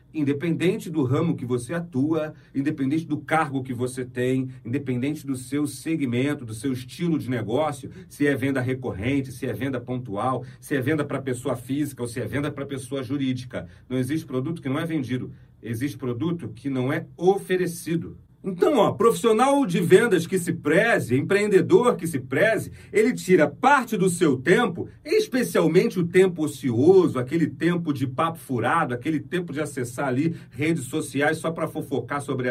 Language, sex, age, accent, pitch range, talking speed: Portuguese, male, 40-59, Brazilian, 130-180 Hz, 170 wpm